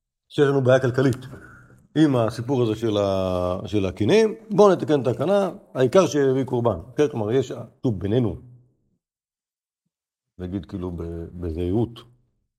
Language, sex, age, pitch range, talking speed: Hebrew, male, 50-69, 95-130 Hz, 115 wpm